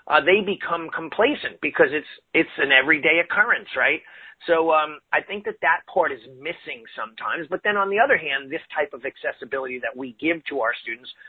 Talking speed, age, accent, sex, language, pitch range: 195 wpm, 40-59, American, male, English, 150-205 Hz